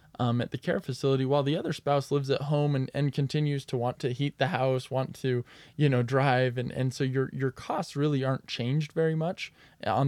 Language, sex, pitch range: English, male, 125-150 Hz